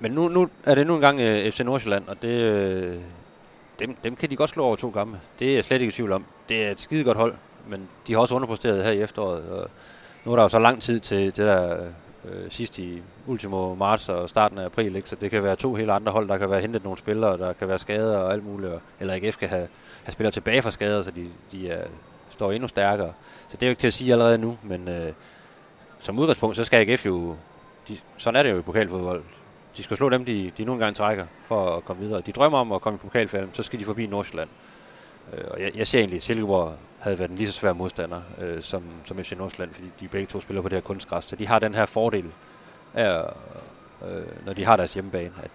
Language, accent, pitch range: Danish, native, 95-115 Hz